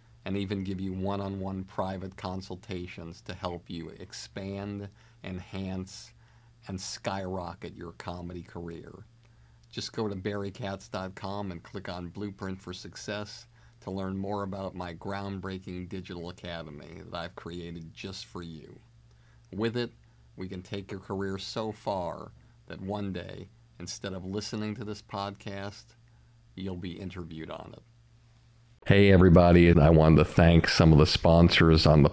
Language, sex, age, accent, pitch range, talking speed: English, male, 50-69, American, 85-100 Hz, 145 wpm